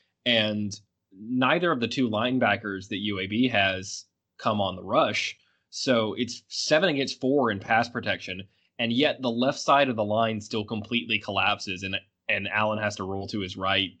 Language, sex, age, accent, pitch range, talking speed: English, male, 20-39, American, 100-125 Hz, 175 wpm